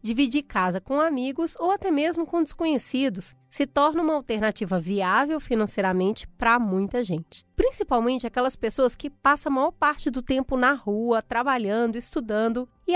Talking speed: 155 wpm